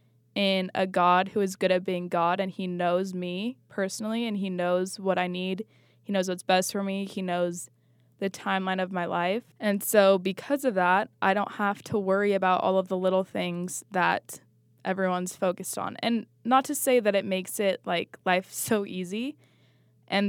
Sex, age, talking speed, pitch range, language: female, 20-39, 195 wpm, 185-220 Hz, English